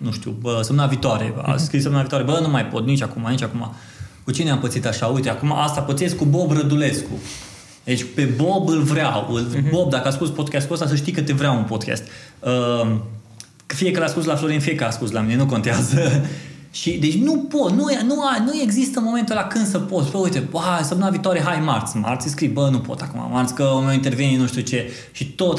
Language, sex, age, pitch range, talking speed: Romanian, male, 20-39, 125-170 Hz, 225 wpm